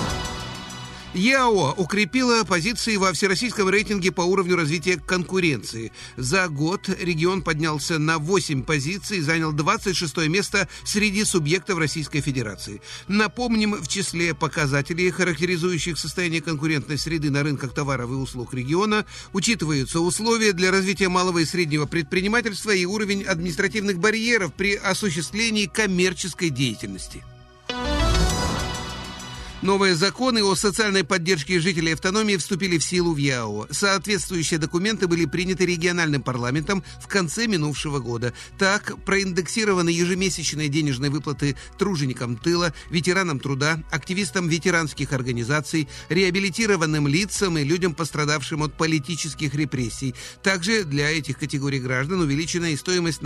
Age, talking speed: 50-69, 120 wpm